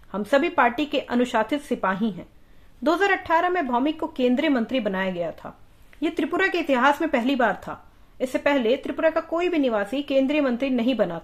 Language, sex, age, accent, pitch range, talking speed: English, female, 30-49, Indian, 240-305 Hz, 185 wpm